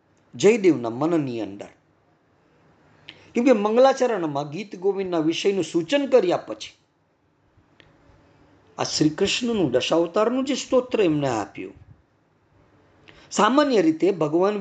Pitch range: 155-260 Hz